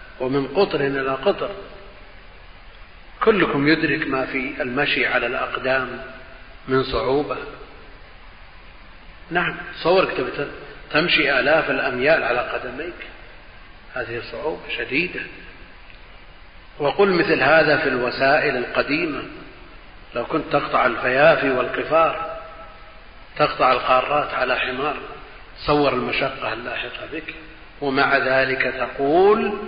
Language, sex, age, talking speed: Arabic, male, 40-59, 90 wpm